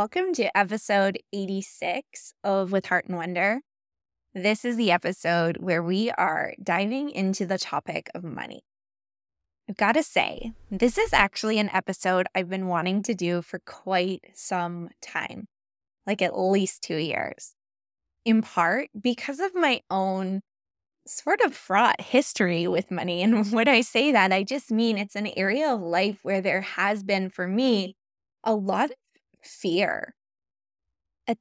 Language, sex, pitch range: English, female, 185-230 Hz